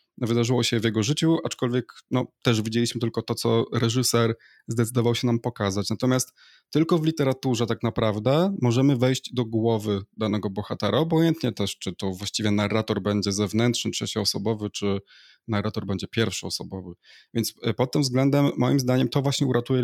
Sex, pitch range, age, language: male, 110-135 Hz, 20-39, Polish